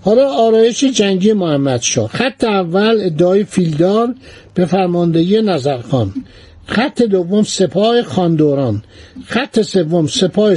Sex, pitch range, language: male, 165-225 Hz, Persian